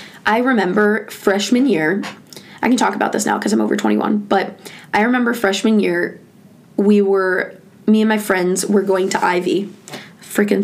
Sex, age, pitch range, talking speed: female, 20-39, 190-215 Hz, 170 wpm